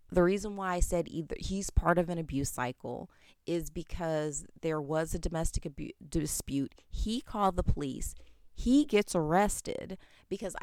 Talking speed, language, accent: 160 wpm, English, American